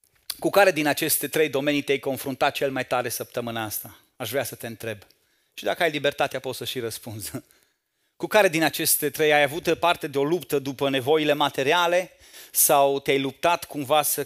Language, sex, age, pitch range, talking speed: Romanian, male, 30-49, 130-160 Hz, 190 wpm